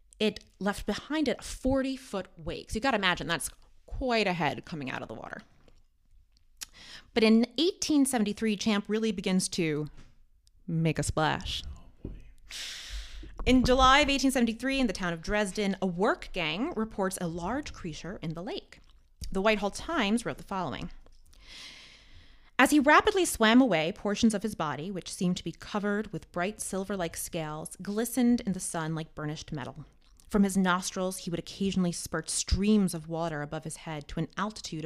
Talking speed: 165 wpm